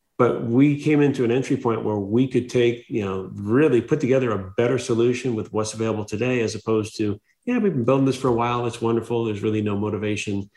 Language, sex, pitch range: English, male, 105-125 Hz